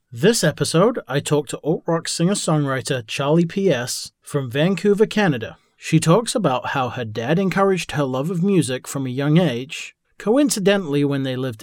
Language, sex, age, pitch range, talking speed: English, male, 40-59, 135-180 Hz, 160 wpm